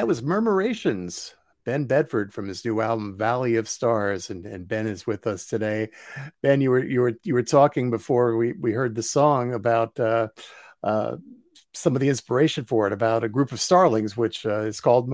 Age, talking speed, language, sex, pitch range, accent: 50-69, 200 wpm, English, male, 115-165 Hz, American